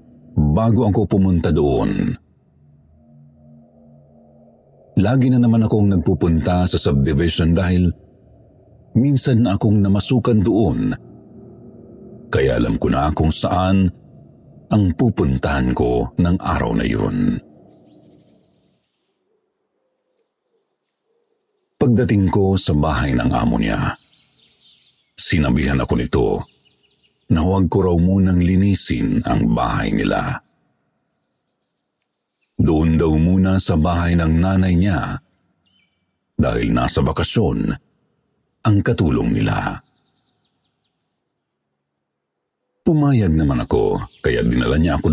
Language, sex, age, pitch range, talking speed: Filipino, male, 50-69, 75-115 Hz, 90 wpm